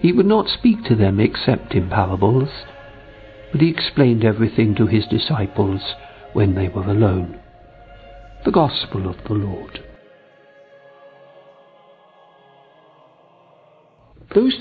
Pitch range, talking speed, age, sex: 105-140 Hz, 105 wpm, 60-79, male